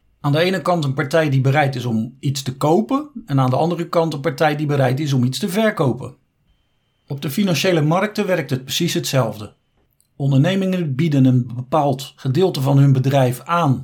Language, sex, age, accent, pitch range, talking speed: Dutch, male, 50-69, Dutch, 130-175 Hz, 190 wpm